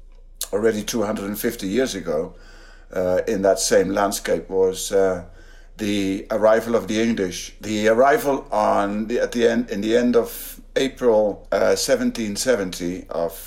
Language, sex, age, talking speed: English, male, 50-69, 155 wpm